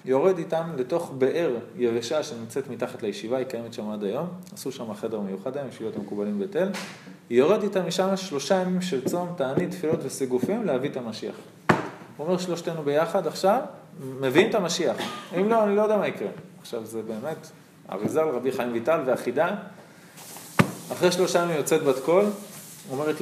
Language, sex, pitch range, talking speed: Hebrew, male, 125-180 Hz, 175 wpm